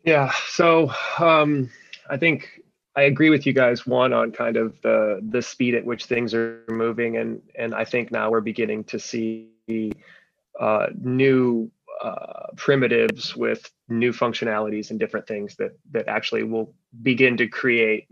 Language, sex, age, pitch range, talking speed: English, male, 20-39, 110-135 Hz, 160 wpm